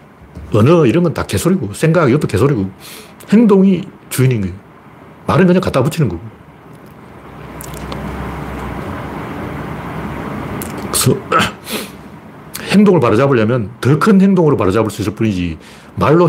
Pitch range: 115-185 Hz